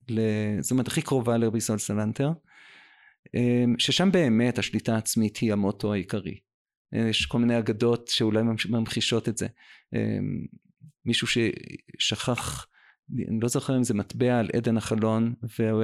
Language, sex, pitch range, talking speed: Hebrew, male, 105-120 Hz, 130 wpm